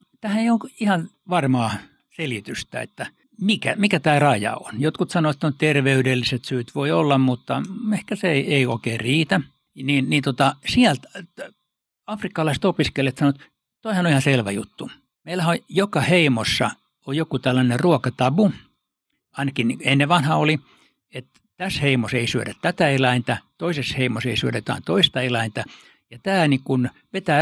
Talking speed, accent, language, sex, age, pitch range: 150 wpm, native, Finnish, male, 60-79, 125-175 Hz